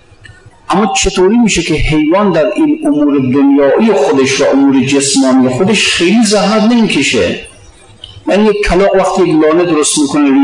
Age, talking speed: 50-69, 150 wpm